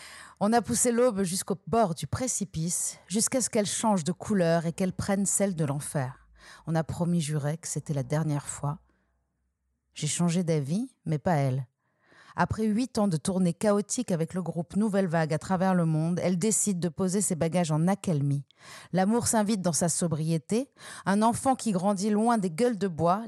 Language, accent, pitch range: French, French, 155-205 Hz